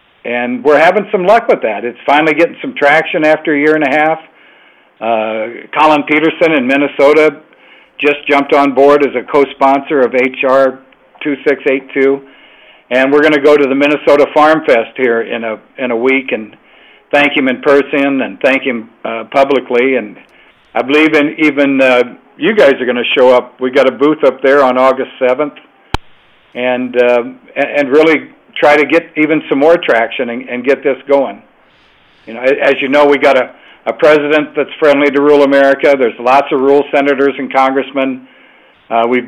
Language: English